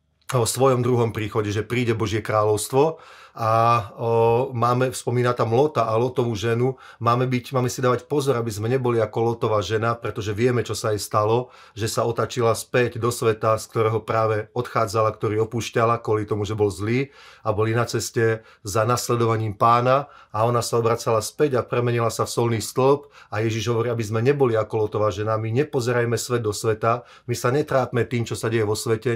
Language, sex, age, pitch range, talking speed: Slovak, male, 30-49, 110-125 Hz, 190 wpm